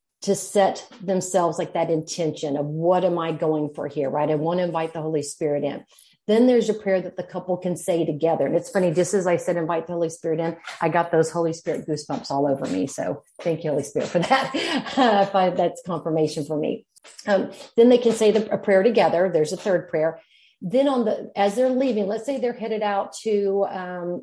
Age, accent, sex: 40-59, American, female